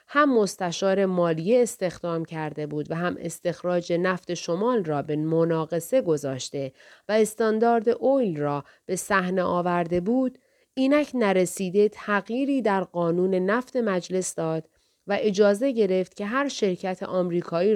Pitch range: 165-220 Hz